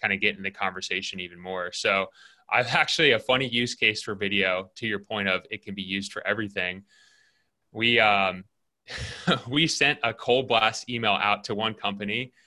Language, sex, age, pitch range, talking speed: English, male, 20-39, 100-120 Hz, 190 wpm